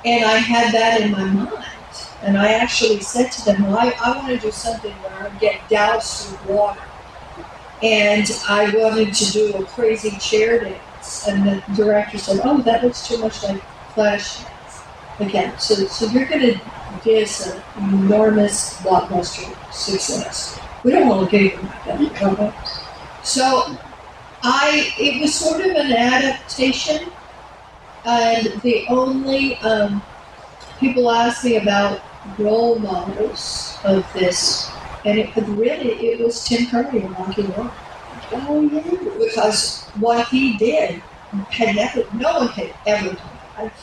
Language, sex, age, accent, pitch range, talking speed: English, female, 50-69, American, 205-245 Hz, 145 wpm